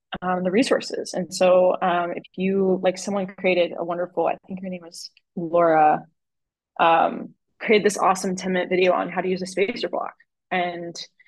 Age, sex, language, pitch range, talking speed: 20-39, female, English, 175-205 Hz, 180 wpm